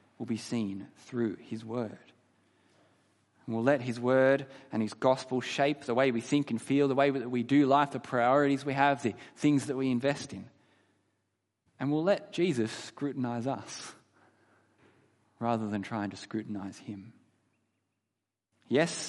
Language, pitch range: English, 110-140 Hz